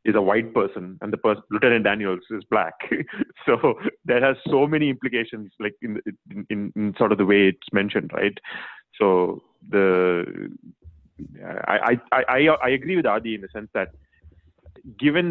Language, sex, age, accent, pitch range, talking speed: English, male, 30-49, Indian, 100-140 Hz, 165 wpm